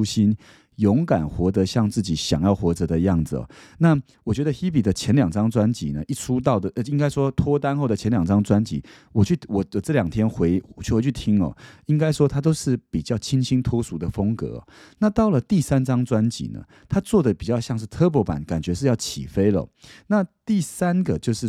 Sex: male